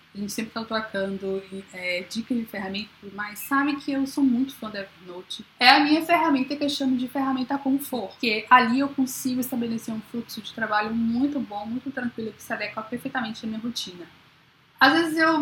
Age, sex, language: 10-29, female, Portuguese